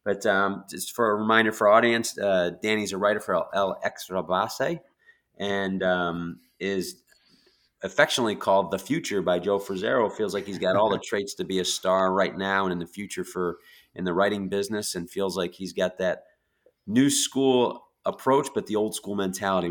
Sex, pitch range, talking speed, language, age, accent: male, 90-110 Hz, 190 wpm, English, 30-49, American